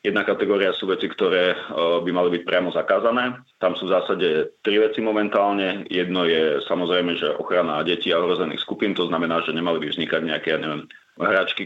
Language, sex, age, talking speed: Slovak, male, 30-49, 185 wpm